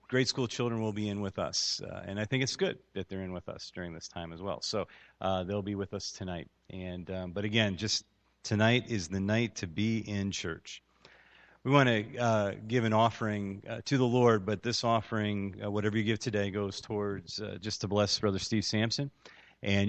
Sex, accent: male, American